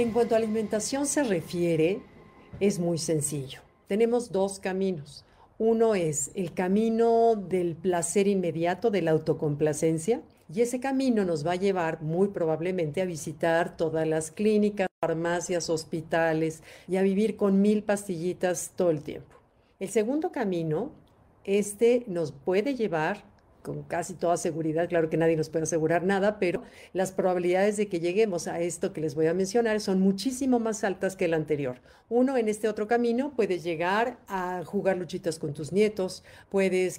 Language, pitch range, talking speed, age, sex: Spanish, 165-210 Hz, 160 wpm, 50-69, female